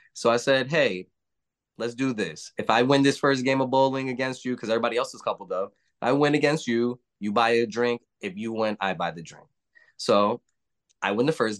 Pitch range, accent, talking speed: 105-135 Hz, American, 220 wpm